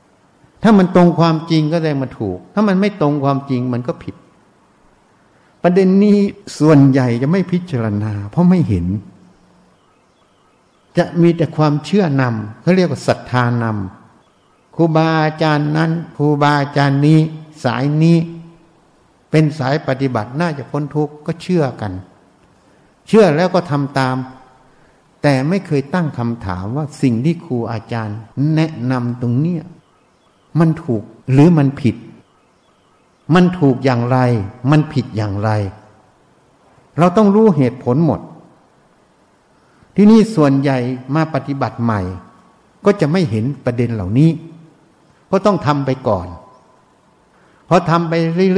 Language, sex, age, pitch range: Thai, male, 60-79, 125-170 Hz